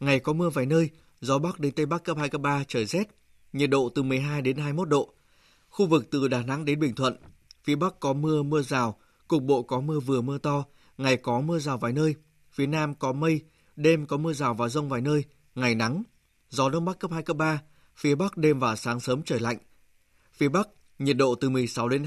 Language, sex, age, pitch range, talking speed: Vietnamese, male, 20-39, 130-155 Hz, 235 wpm